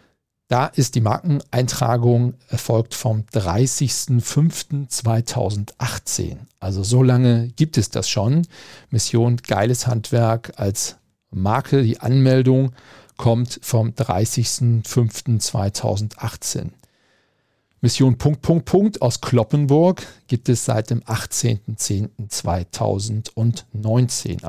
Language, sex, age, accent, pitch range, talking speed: German, male, 50-69, German, 110-130 Hz, 85 wpm